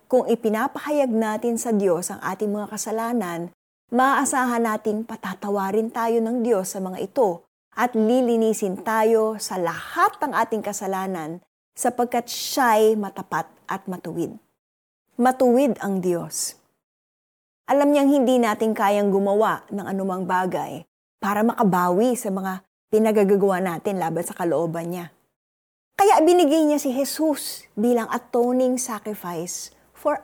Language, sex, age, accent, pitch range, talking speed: Filipino, female, 20-39, native, 190-240 Hz, 125 wpm